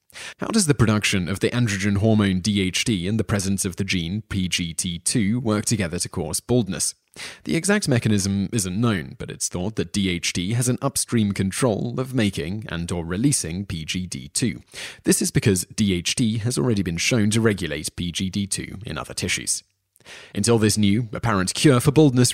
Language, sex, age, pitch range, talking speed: English, male, 30-49, 95-120 Hz, 165 wpm